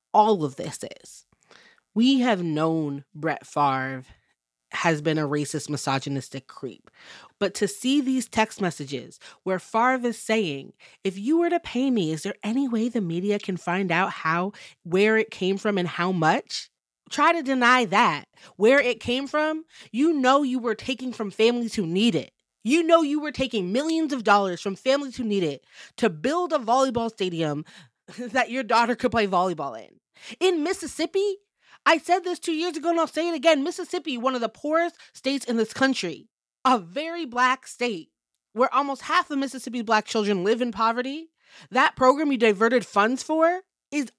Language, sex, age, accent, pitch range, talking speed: English, female, 20-39, American, 200-285 Hz, 180 wpm